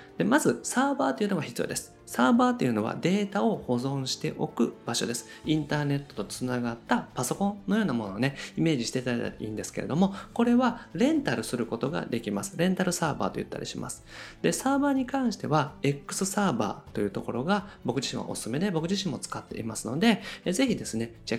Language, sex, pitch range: Japanese, male, 125-205 Hz